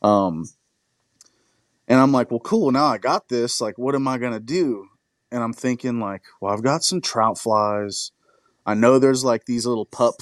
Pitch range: 105-125 Hz